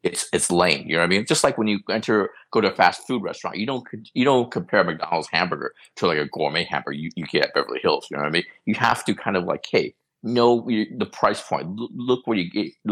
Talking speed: 265 wpm